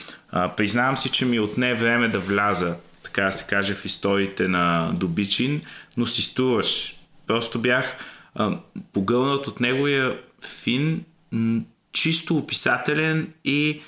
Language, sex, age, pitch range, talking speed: Bulgarian, male, 30-49, 105-130 Hz, 120 wpm